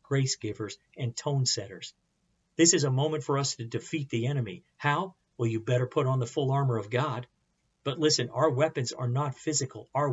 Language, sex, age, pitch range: English, male, 50-69, 120-145 Hz